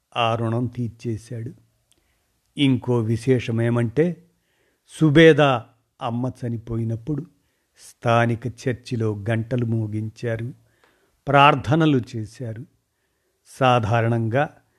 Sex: male